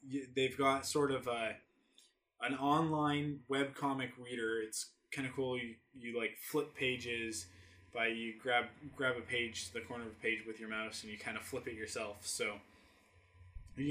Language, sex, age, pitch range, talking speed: English, male, 20-39, 110-135 Hz, 185 wpm